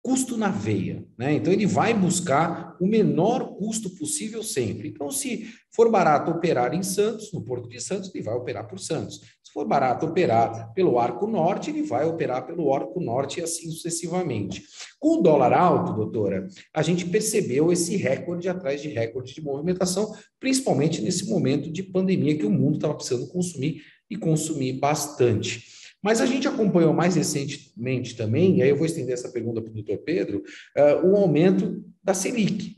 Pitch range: 150-205 Hz